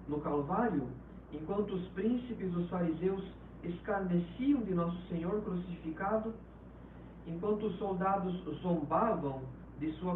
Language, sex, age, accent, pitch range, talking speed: Portuguese, male, 50-69, Brazilian, 150-210 Hz, 110 wpm